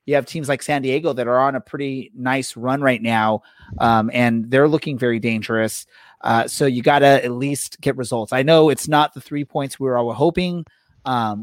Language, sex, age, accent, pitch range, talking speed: English, male, 30-49, American, 120-145 Hz, 215 wpm